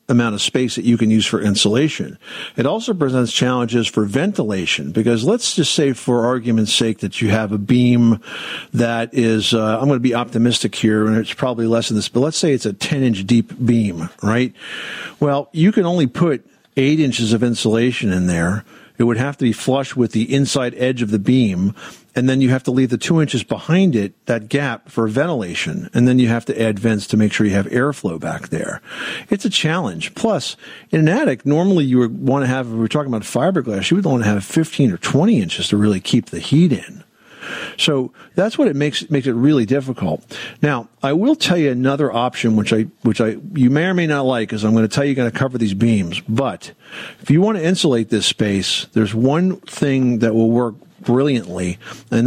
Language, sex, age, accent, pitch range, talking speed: English, male, 50-69, American, 110-140 Hz, 220 wpm